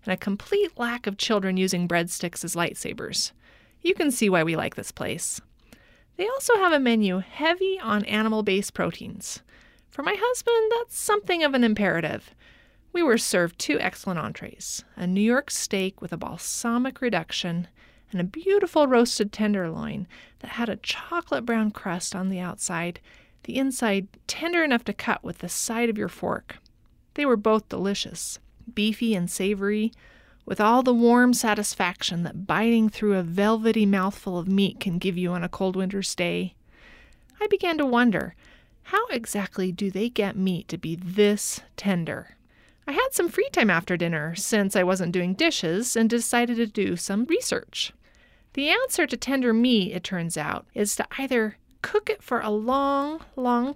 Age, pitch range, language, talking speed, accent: 30-49, 185-255 Hz, English, 170 wpm, American